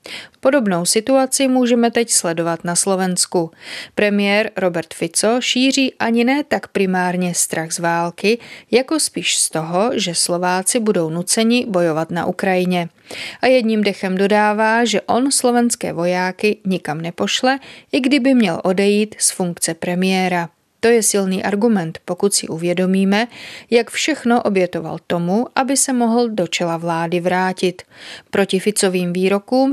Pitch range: 175-235 Hz